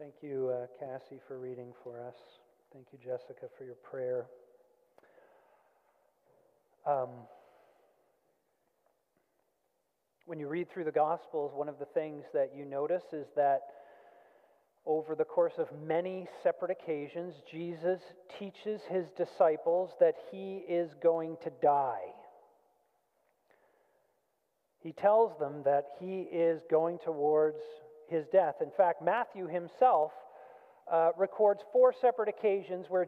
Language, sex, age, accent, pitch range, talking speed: English, male, 40-59, American, 165-220 Hz, 120 wpm